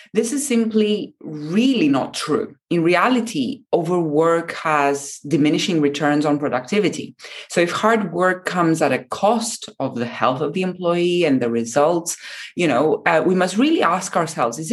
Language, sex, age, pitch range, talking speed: English, female, 30-49, 145-215 Hz, 165 wpm